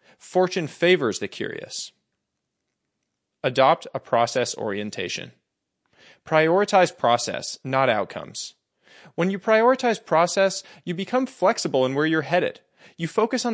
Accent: American